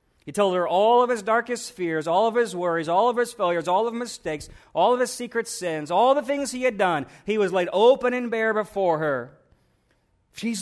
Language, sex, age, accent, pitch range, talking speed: English, male, 40-59, American, 135-220 Hz, 225 wpm